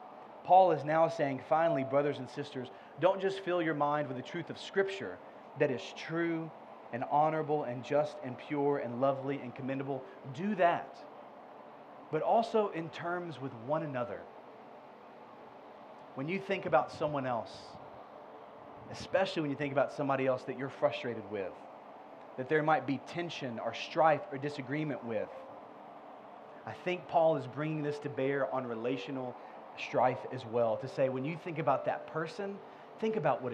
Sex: male